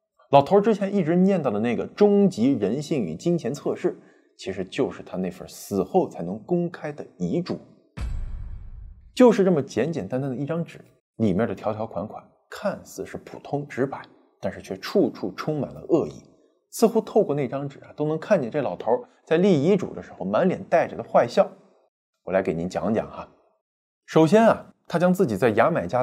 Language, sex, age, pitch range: Chinese, male, 20-39, 140-200 Hz